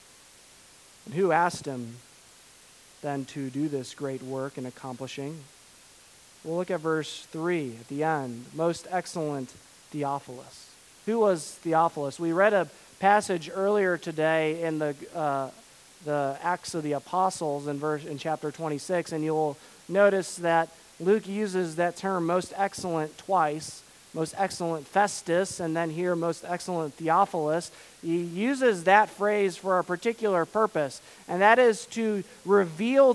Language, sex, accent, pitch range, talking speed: English, male, American, 155-195 Hz, 140 wpm